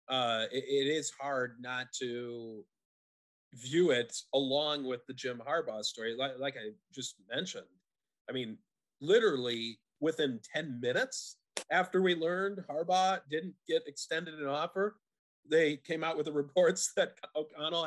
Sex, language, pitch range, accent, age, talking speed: male, English, 120-165 Hz, American, 30-49, 145 wpm